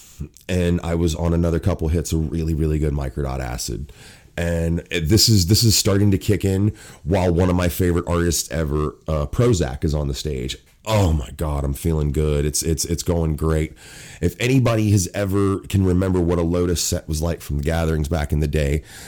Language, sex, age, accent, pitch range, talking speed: English, male, 30-49, American, 80-95 Hz, 205 wpm